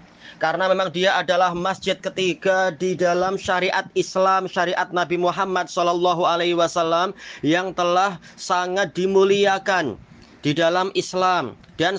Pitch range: 180-200 Hz